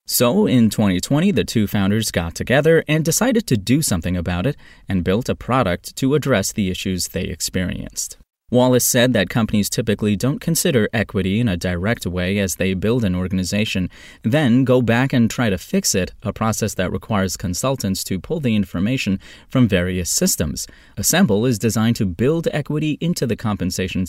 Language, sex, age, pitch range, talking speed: English, male, 30-49, 95-125 Hz, 175 wpm